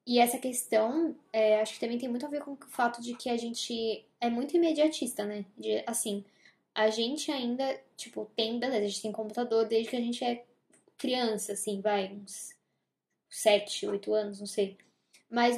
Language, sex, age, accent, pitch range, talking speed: Portuguese, female, 10-29, Brazilian, 220-265 Hz, 190 wpm